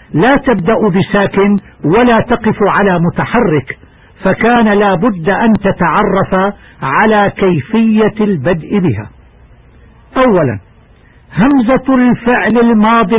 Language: Arabic